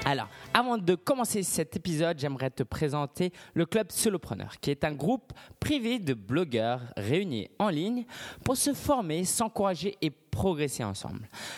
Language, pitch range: French, 125-205 Hz